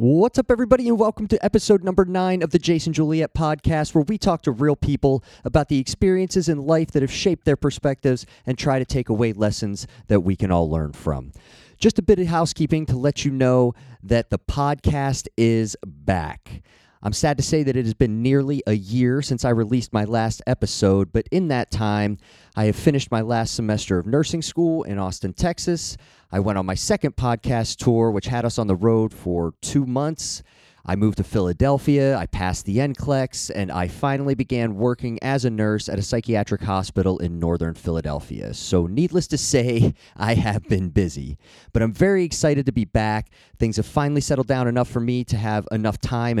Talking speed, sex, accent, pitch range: 200 wpm, male, American, 105-145 Hz